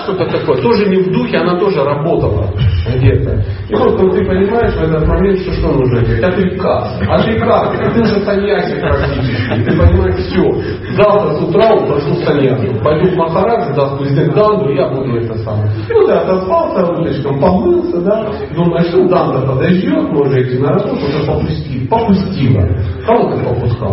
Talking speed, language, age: 170 wpm, Russian, 40-59